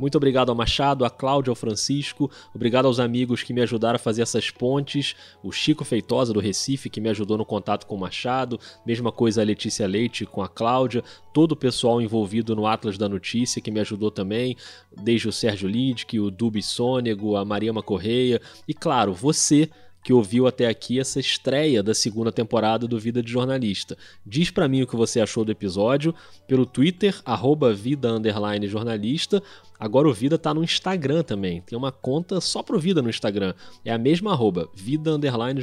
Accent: Brazilian